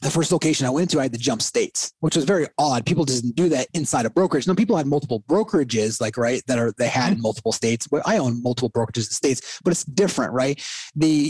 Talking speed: 260 wpm